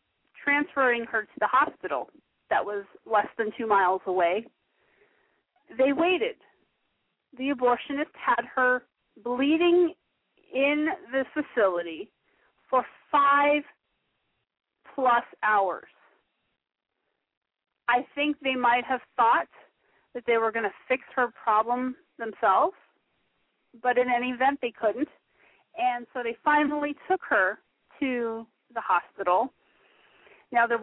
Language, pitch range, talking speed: English, 225-285 Hz, 110 wpm